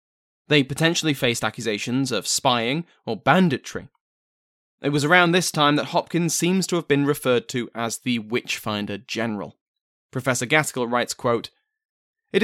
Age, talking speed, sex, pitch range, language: 20-39, 140 wpm, male, 115-170 Hz, English